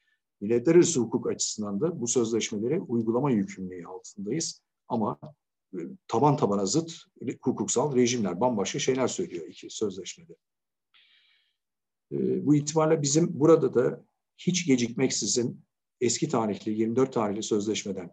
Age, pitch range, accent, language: 50-69, 115-170 Hz, native, Turkish